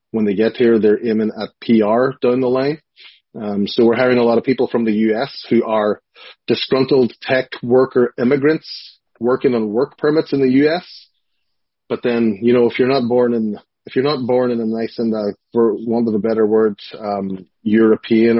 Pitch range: 110-125 Hz